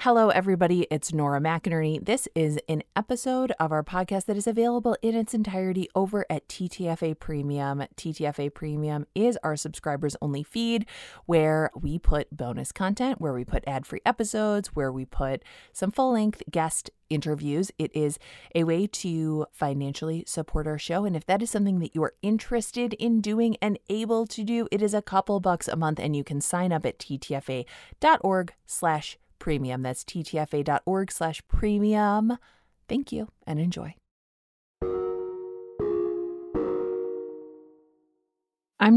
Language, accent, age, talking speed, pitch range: English, American, 20-39, 145 wpm, 145-210 Hz